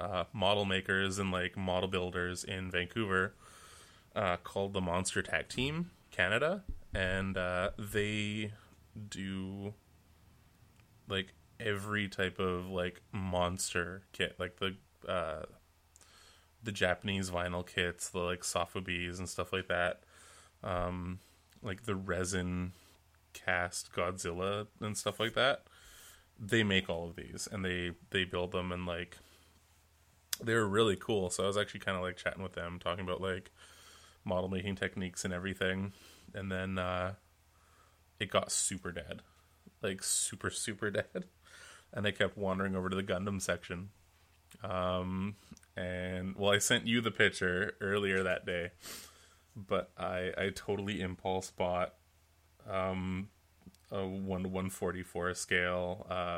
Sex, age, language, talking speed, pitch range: male, 20-39, English, 140 wpm, 90-100 Hz